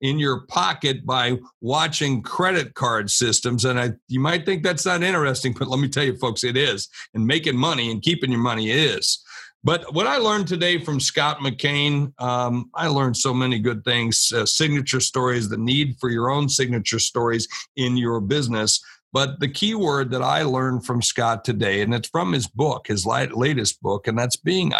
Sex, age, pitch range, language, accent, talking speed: male, 50-69, 115-145 Hz, English, American, 195 wpm